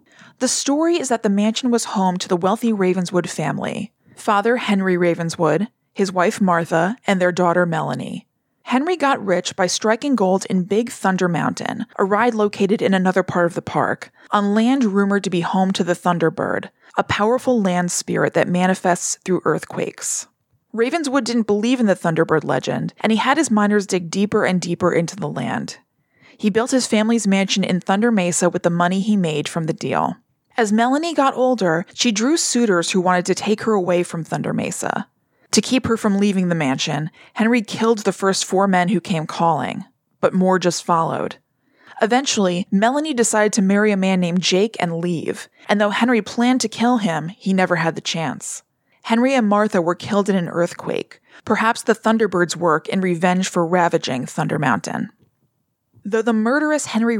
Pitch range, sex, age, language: 180-225 Hz, female, 20-39, English